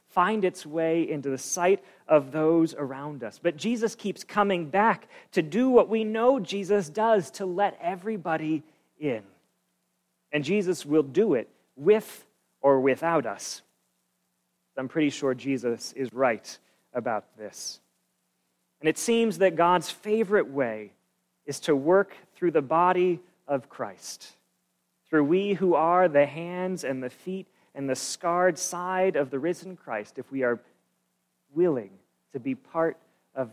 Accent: American